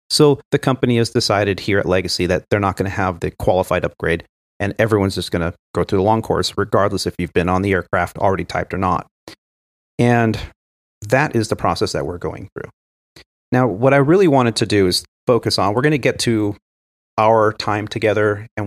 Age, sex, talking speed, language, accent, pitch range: 40-59, male, 210 wpm, English, American, 90-115 Hz